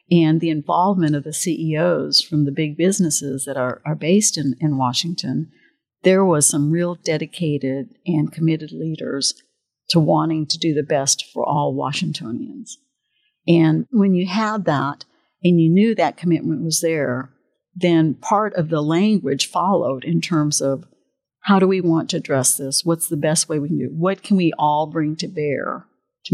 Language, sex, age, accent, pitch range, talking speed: English, female, 60-79, American, 150-190 Hz, 180 wpm